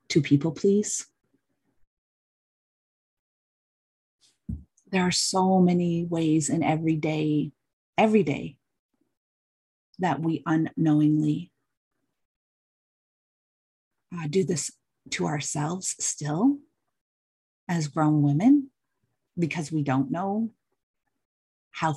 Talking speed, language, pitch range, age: 80 wpm, English, 145-165 Hz, 40-59